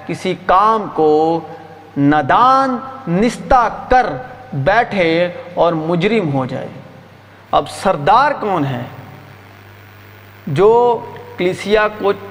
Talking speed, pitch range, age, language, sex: 90 wpm, 115-180 Hz, 40-59, Urdu, male